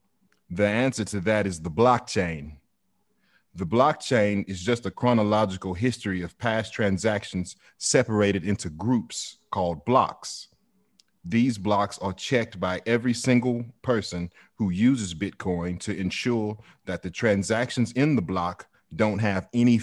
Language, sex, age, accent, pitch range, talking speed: English, male, 30-49, American, 95-115 Hz, 135 wpm